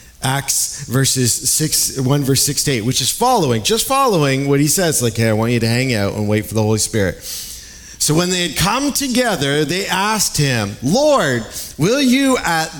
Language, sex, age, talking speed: English, male, 40-59, 200 wpm